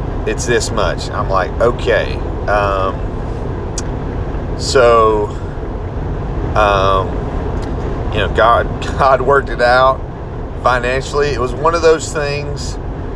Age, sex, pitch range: 30-49, male, 110-145 Hz